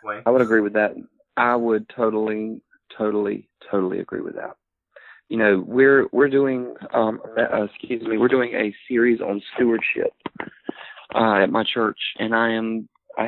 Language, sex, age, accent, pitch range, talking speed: English, male, 30-49, American, 110-130 Hz, 165 wpm